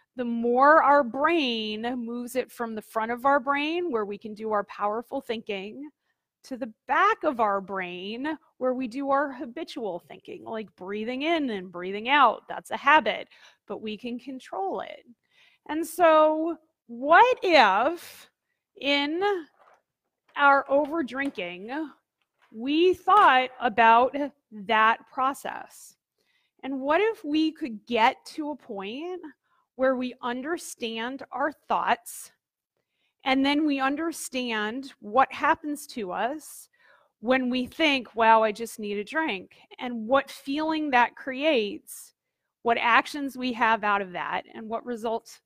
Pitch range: 230-305 Hz